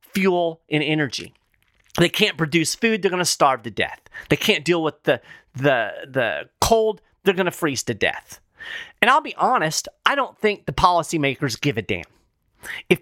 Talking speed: 185 wpm